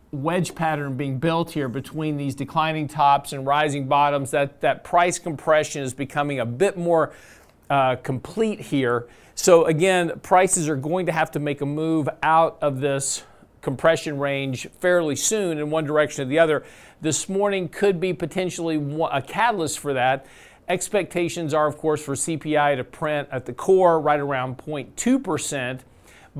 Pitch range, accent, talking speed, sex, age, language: 140-165 Hz, American, 160 wpm, male, 50-69, English